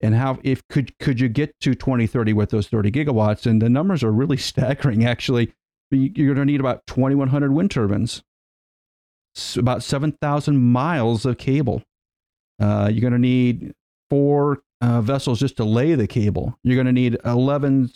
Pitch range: 110-140 Hz